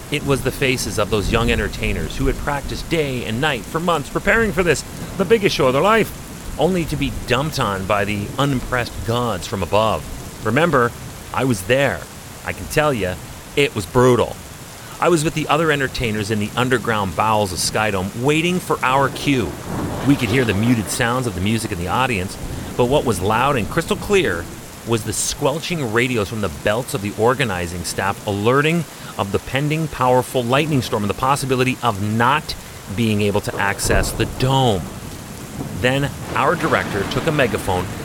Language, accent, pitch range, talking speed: English, American, 105-140 Hz, 185 wpm